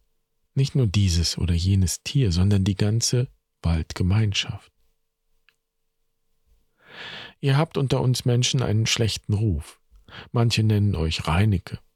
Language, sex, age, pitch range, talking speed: German, male, 50-69, 95-120 Hz, 110 wpm